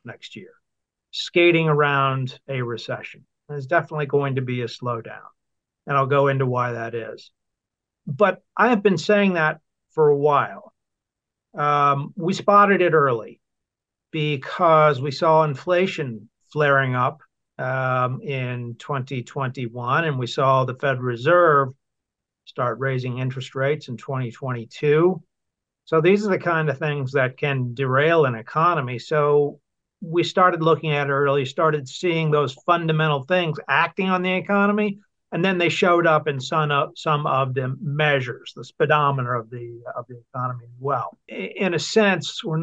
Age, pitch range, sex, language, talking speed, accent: 50-69, 130-165 Hz, male, English, 150 wpm, American